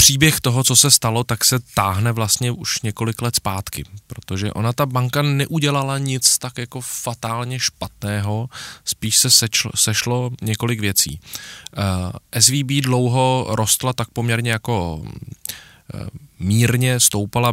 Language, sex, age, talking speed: Czech, male, 20-39, 125 wpm